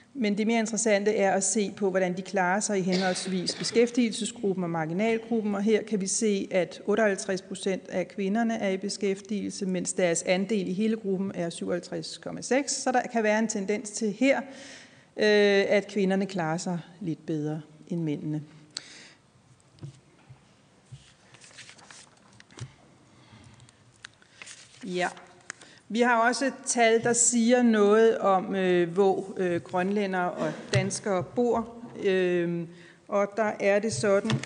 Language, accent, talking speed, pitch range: Danish, native, 130 wpm, 185-220 Hz